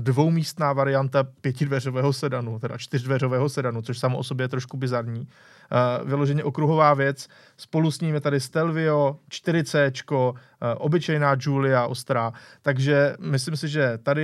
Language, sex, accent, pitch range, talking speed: Czech, male, native, 130-155 Hz, 145 wpm